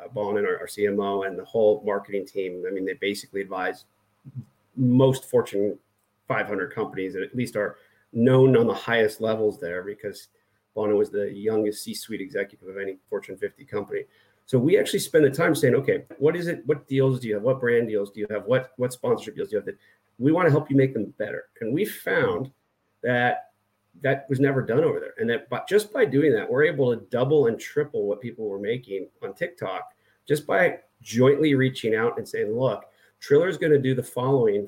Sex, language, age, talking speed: male, English, 40-59, 210 wpm